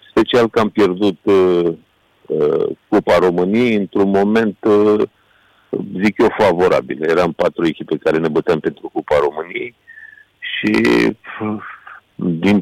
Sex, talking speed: male, 130 wpm